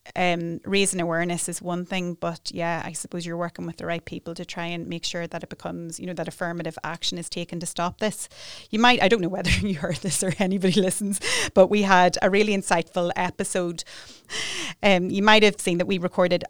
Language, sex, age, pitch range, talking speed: English, female, 30-49, 170-185 Hz, 220 wpm